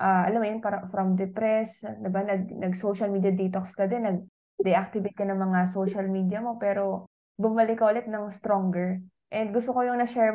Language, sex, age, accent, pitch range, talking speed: English, female, 20-39, Filipino, 195-240 Hz, 190 wpm